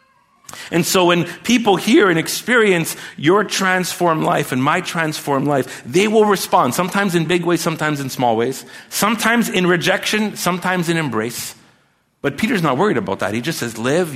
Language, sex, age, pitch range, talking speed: English, male, 50-69, 120-195 Hz, 175 wpm